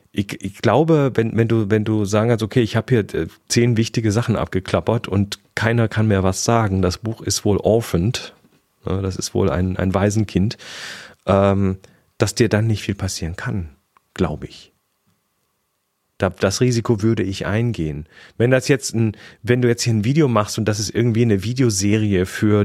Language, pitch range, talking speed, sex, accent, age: German, 95-115 Hz, 185 wpm, male, German, 40-59